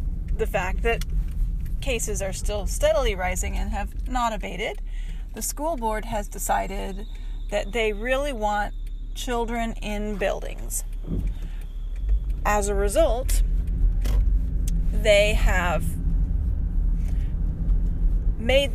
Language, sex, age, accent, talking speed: English, female, 40-59, American, 95 wpm